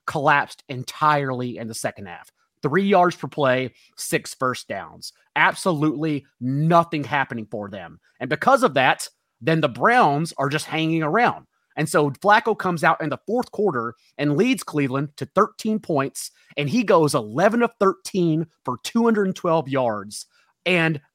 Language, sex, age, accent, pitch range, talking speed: English, male, 30-49, American, 145-195 Hz, 155 wpm